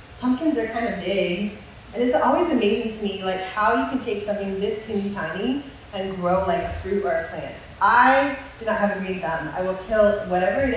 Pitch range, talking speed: 185-235 Hz, 225 wpm